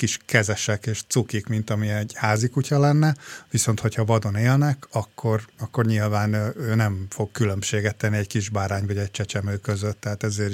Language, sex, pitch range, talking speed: Hungarian, male, 105-125 Hz, 180 wpm